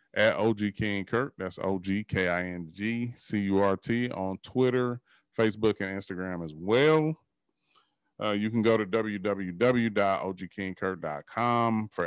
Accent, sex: American, male